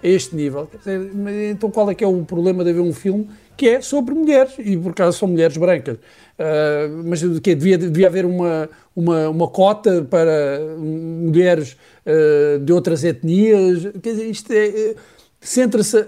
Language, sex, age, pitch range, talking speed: Portuguese, male, 50-69, 155-200 Hz, 170 wpm